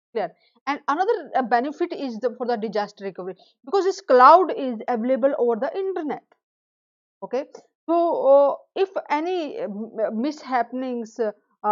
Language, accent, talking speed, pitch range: English, Indian, 125 wpm, 220-285 Hz